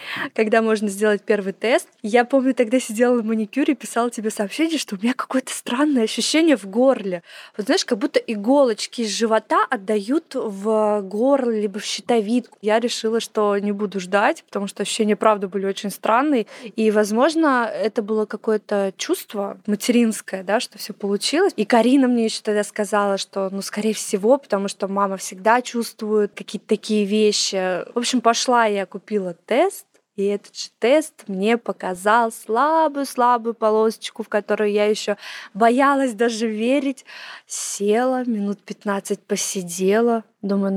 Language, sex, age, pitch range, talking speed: Russian, female, 20-39, 205-250 Hz, 155 wpm